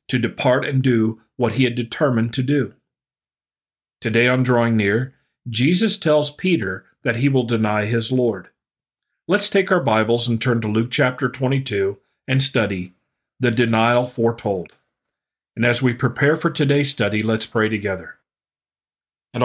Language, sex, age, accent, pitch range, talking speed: English, male, 50-69, American, 115-135 Hz, 150 wpm